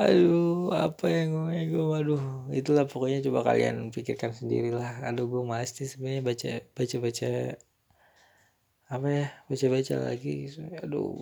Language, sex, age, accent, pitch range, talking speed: Indonesian, male, 20-39, native, 115-135 Hz, 140 wpm